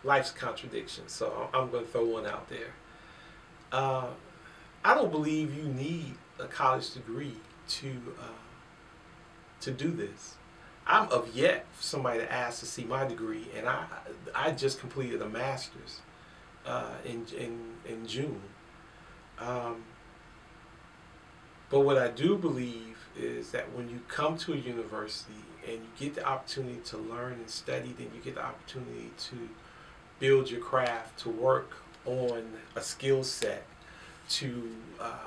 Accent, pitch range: American, 115-135 Hz